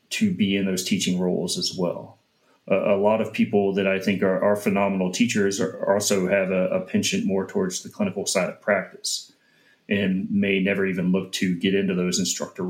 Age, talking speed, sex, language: 30-49, 200 wpm, male, English